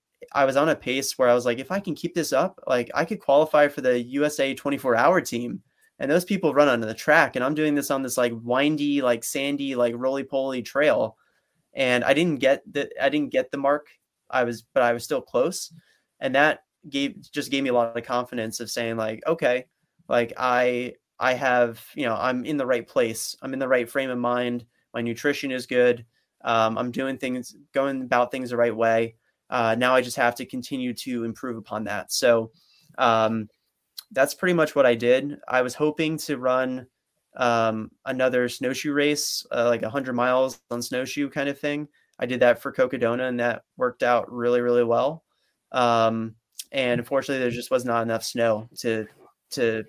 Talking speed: 205 wpm